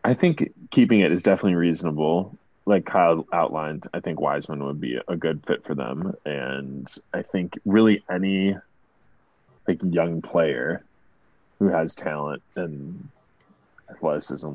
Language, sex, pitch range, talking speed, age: English, male, 80-90 Hz, 135 wpm, 30-49